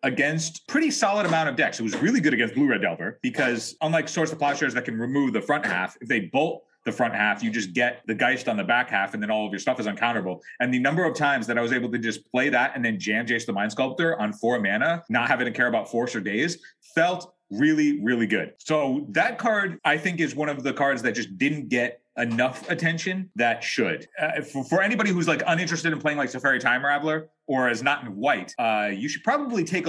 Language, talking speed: English, 250 wpm